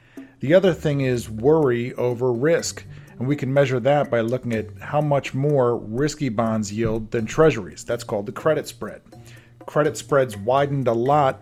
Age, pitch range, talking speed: 40-59, 120-145 Hz, 175 wpm